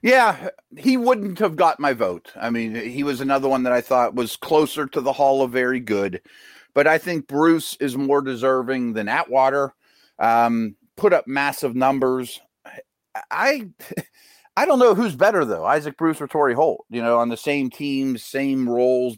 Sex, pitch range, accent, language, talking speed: male, 125-155 Hz, American, English, 180 wpm